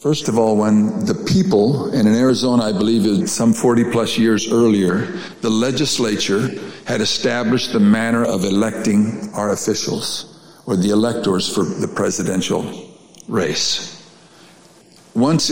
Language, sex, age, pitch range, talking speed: English, male, 60-79, 115-150 Hz, 130 wpm